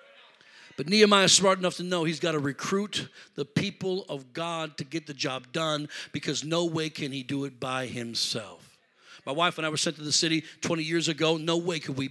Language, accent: English, American